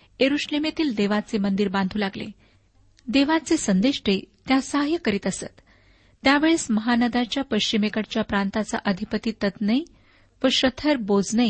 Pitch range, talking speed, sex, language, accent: 210-270 Hz, 100 wpm, female, Marathi, native